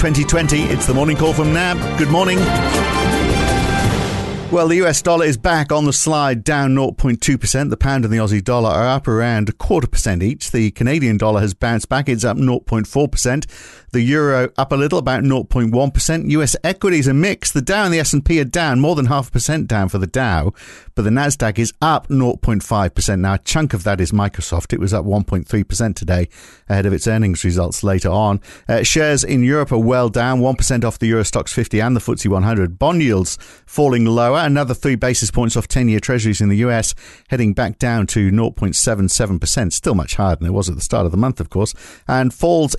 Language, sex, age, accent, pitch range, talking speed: English, male, 50-69, British, 105-145 Hz, 200 wpm